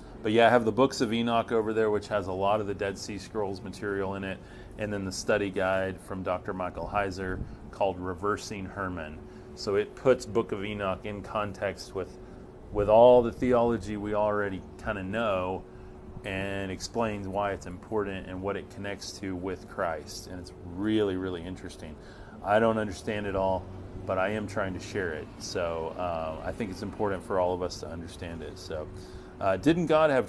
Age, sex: 30-49, male